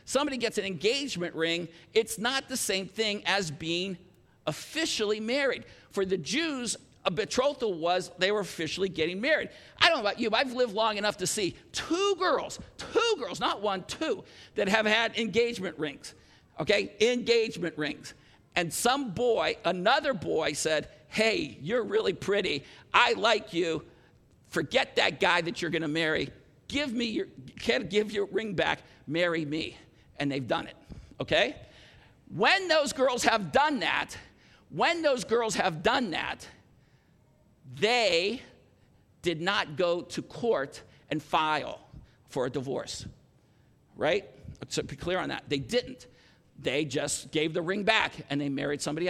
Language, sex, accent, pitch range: English, male, American, 165-240 Hz